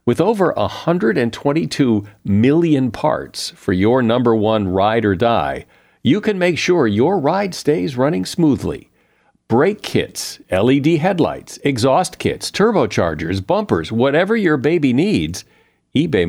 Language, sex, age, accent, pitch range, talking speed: English, male, 50-69, American, 95-145 Hz, 135 wpm